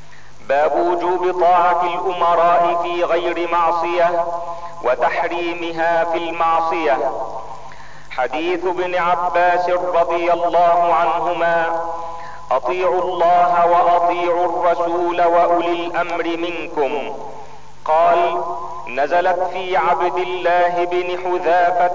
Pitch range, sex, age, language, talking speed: 170-175 Hz, male, 50-69, Arabic, 80 wpm